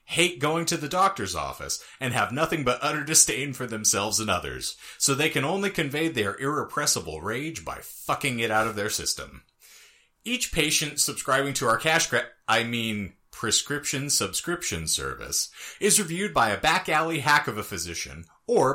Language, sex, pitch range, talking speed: English, male, 110-170 Hz, 170 wpm